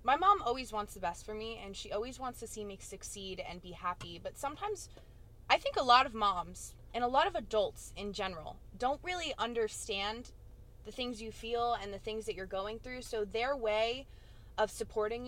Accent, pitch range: American, 195-245 Hz